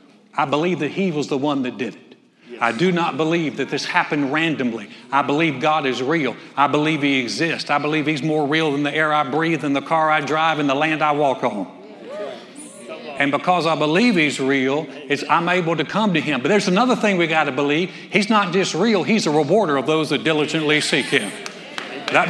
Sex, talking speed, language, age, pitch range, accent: male, 225 wpm, English, 60-79, 135-170 Hz, American